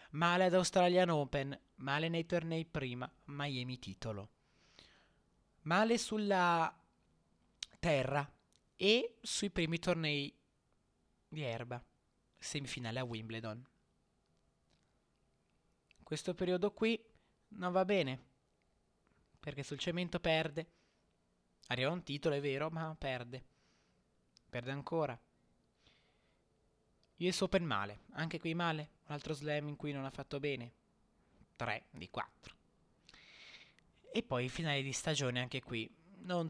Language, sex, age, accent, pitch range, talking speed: Italian, male, 20-39, native, 125-180 Hz, 115 wpm